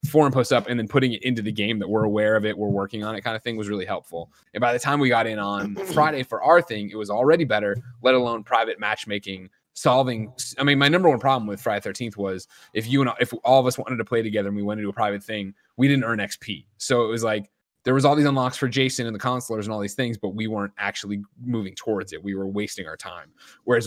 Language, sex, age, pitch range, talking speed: English, male, 20-39, 105-130 Hz, 275 wpm